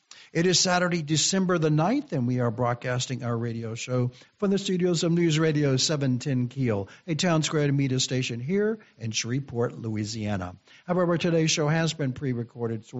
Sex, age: male, 60-79